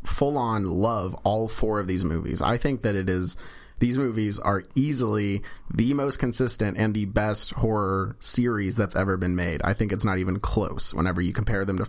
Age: 30-49